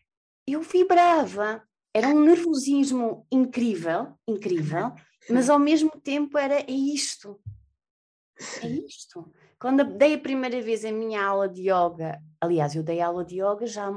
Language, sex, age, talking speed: Portuguese, female, 20-39, 140 wpm